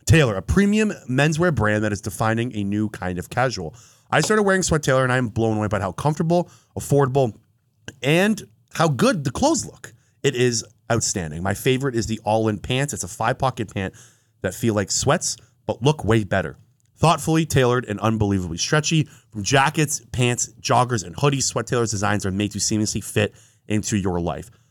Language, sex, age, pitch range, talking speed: English, male, 30-49, 105-140 Hz, 185 wpm